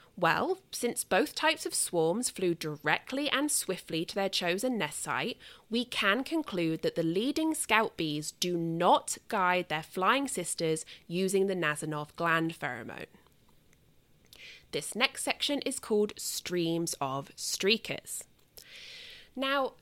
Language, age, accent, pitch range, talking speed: English, 20-39, British, 170-265 Hz, 130 wpm